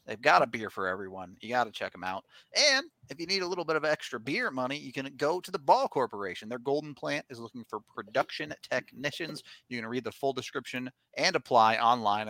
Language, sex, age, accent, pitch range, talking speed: English, male, 30-49, American, 115-155 Hz, 230 wpm